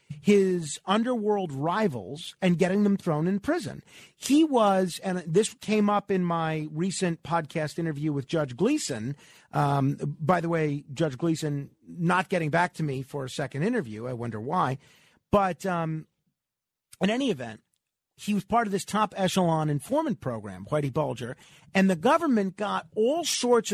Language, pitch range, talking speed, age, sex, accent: English, 160-220 Hz, 160 wpm, 40-59, male, American